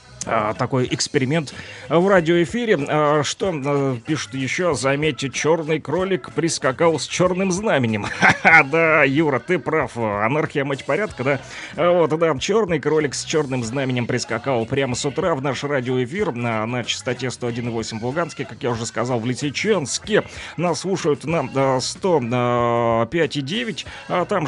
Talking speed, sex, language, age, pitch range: 130 wpm, male, Russian, 30-49, 125-160 Hz